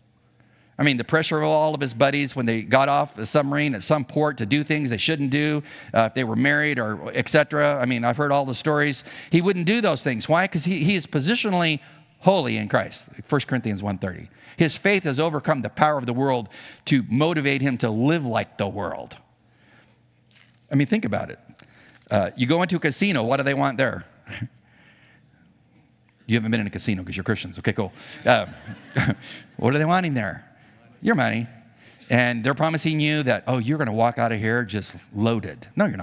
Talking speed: 210 wpm